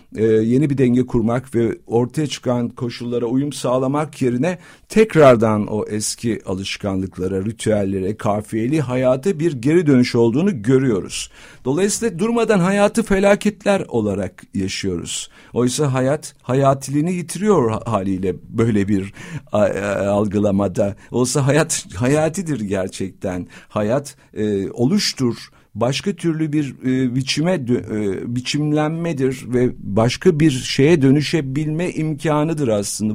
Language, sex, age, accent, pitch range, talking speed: Turkish, male, 50-69, native, 110-150 Hz, 105 wpm